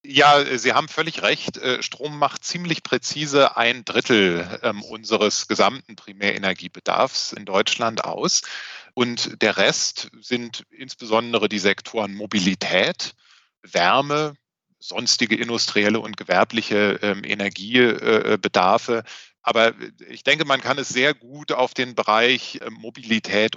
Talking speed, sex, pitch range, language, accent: 110 wpm, male, 110-145 Hz, German, German